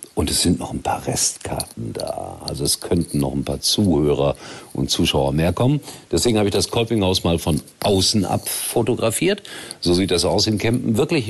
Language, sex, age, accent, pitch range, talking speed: German, male, 50-69, German, 85-115 Hz, 190 wpm